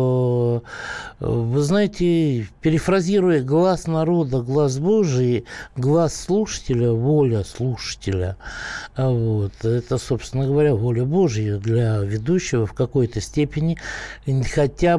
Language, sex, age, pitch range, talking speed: Russian, male, 60-79, 115-150 Hz, 90 wpm